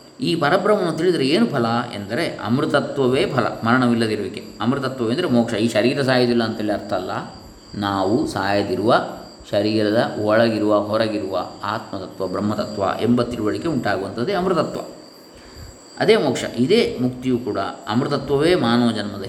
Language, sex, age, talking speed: Kannada, male, 20-39, 110 wpm